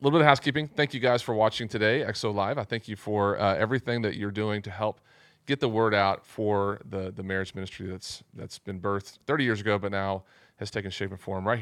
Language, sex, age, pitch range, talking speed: English, male, 30-49, 95-115 Hz, 250 wpm